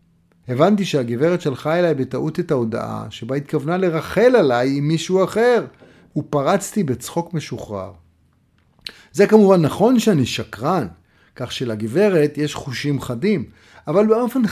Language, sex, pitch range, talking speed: Hebrew, male, 135-185 Hz, 120 wpm